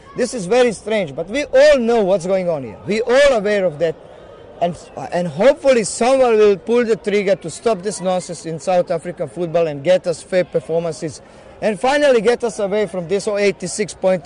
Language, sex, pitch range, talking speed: English, male, 155-195 Hz, 200 wpm